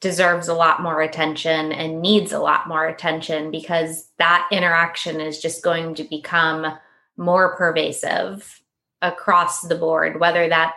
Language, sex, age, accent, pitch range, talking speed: English, female, 20-39, American, 175-210 Hz, 145 wpm